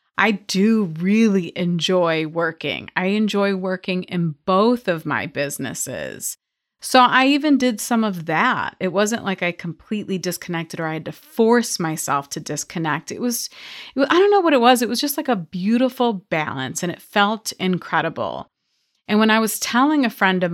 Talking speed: 180 wpm